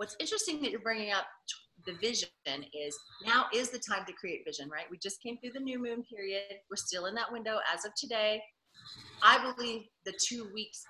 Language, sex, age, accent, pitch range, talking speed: English, female, 30-49, American, 160-205 Hz, 210 wpm